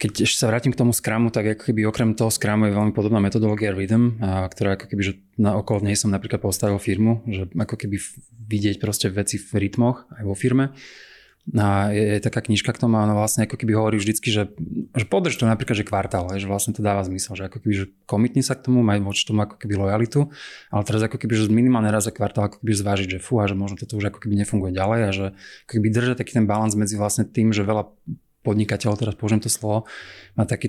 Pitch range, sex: 100-115 Hz, male